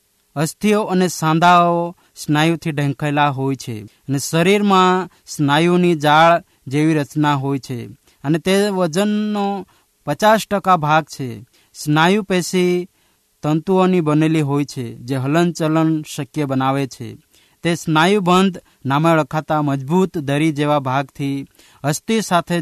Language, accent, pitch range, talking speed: Hindi, native, 140-170 Hz, 90 wpm